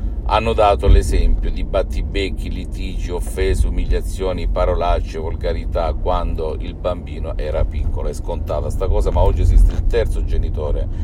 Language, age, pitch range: Italian, 50-69, 80-100 Hz